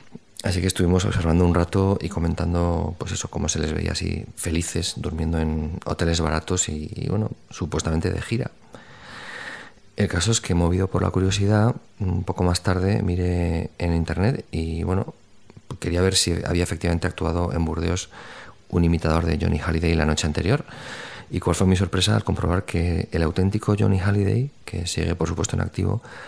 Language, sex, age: Spanish, male, 30-49